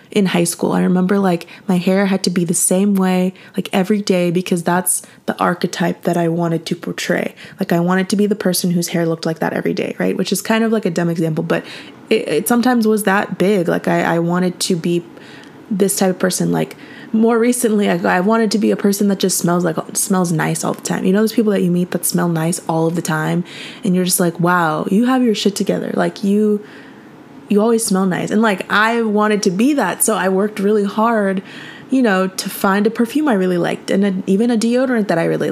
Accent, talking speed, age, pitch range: American, 240 wpm, 20-39, 175-215 Hz